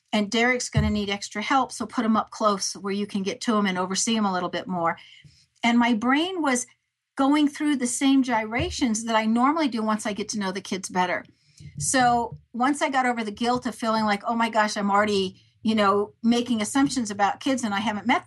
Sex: female